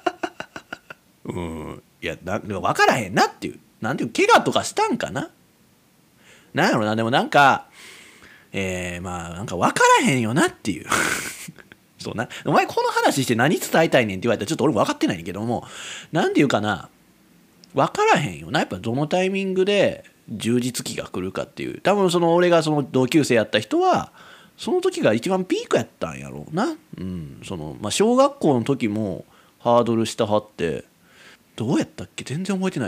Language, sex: Japanese, male